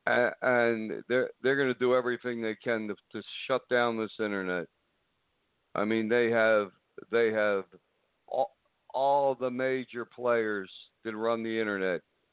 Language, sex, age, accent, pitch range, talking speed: English, male, 60-79, American, 110-130 Hz, 145 wpm